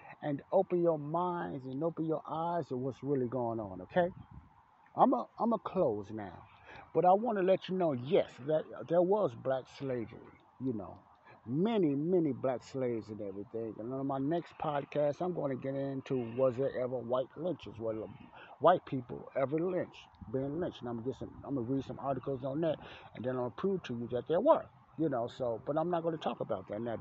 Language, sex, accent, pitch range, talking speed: English, male, American, 130-170 Hz, 215 wpm